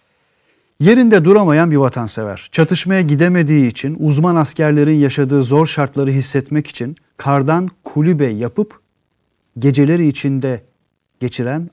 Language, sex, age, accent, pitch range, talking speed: Turkish, male, 40-59, native, 130-170 Hz, 100 wpm